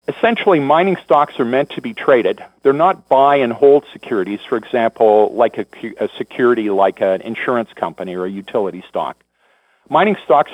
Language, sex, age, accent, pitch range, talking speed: English, male, 50-69, American, 115-160 Hz, 160 wpm